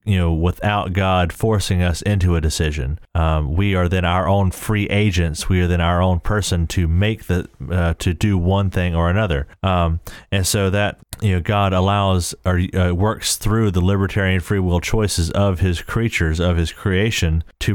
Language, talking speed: English, 195 wpm